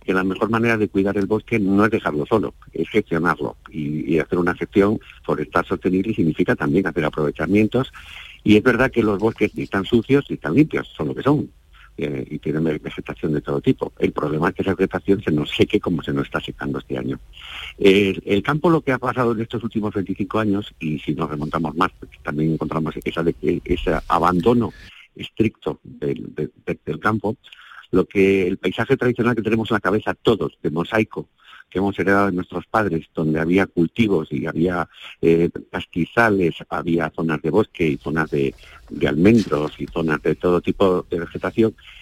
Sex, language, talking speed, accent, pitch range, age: male, Spanish, 195 wpm, Spanish, 80-105 Hz, 50-69